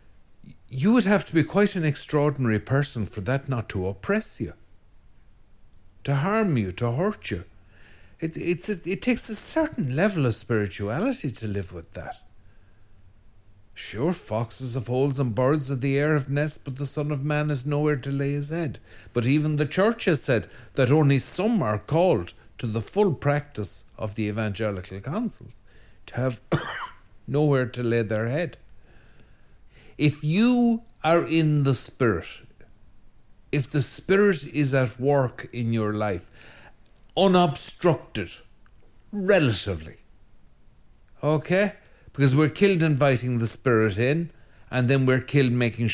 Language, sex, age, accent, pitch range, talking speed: English, male, 50-69, Irish, 105-150 Hz, 150 wpm